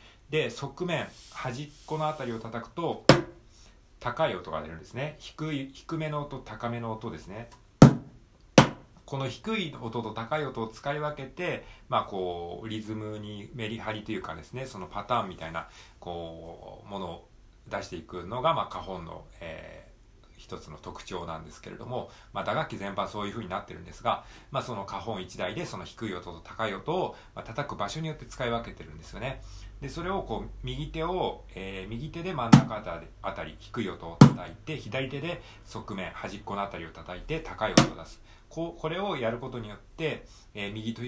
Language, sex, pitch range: Japanese, male, 95-135 Hz